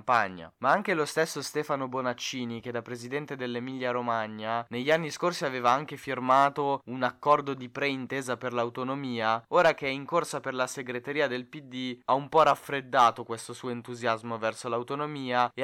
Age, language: 20-39, Italian